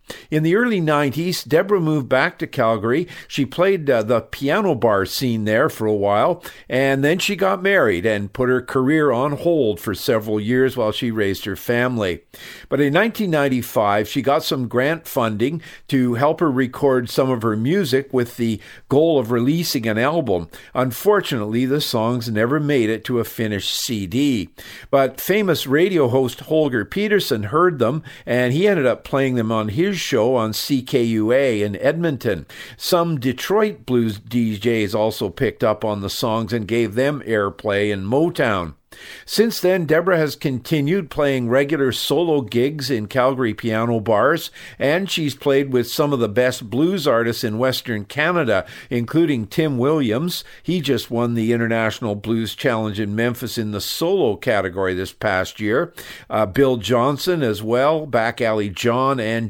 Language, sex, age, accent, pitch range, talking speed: English, male, 50-69, American, 115-150 Hz, 165 wpm